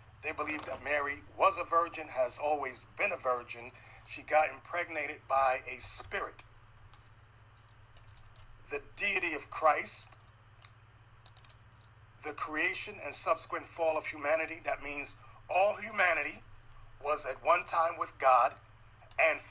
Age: 40-59